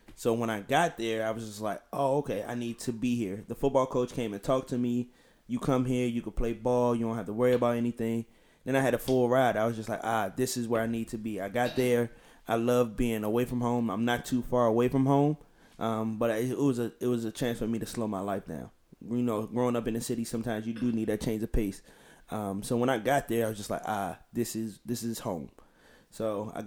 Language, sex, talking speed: English, male, 270 wpm